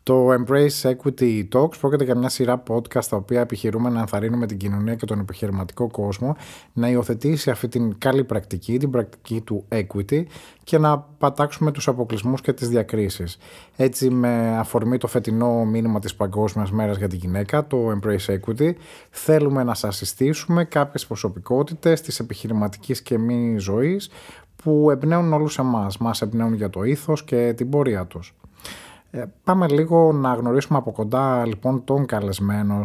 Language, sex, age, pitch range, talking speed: Greek, male, 30-49, 105-130 Hz, 160 wpm